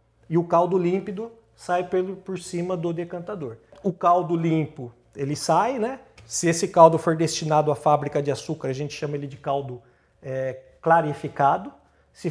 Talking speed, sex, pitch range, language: 155 wpm, male, 150-180 Hz, Portuguese